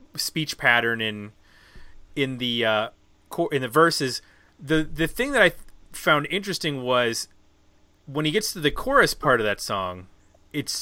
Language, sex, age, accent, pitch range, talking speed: English, male, 30-49, American, 110-155 Hz, 160 wpm